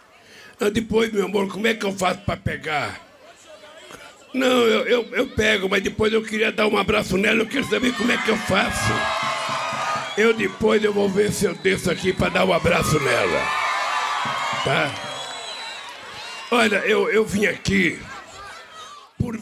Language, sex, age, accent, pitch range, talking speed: Portuguese, male, 60-79, Brazilian, 180-220 Hz, 165 wpm